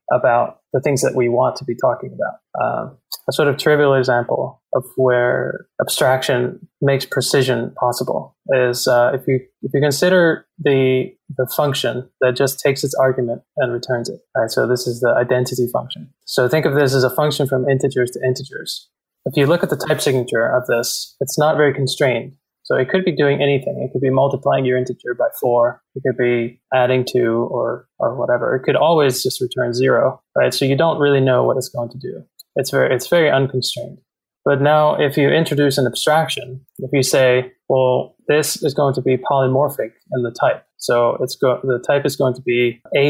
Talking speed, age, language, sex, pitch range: 200 wpm, 20-39, English, male, 125-140 Hz